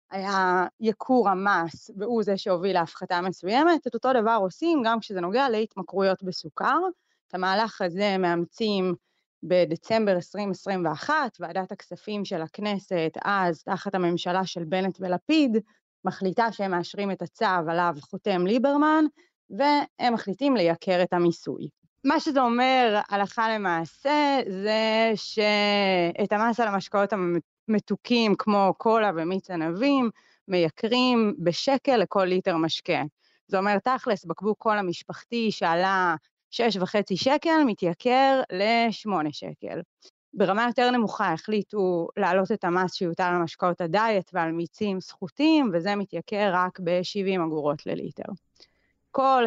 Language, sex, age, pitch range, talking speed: Hebrew, female, 20-39, 180-225 Hz, 120 wpm